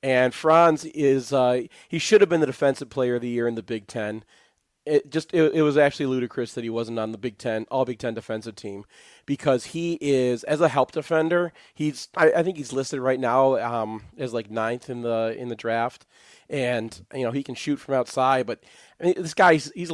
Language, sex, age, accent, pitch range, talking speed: English, male, 30-49, American, 120-150 Hz, 215 wpm